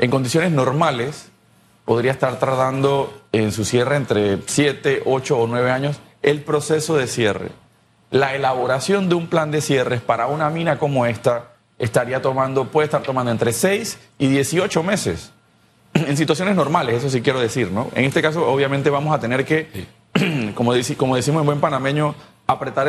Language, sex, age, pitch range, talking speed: Spanish, male, 30-49, 125-160 Hz, 170 wpm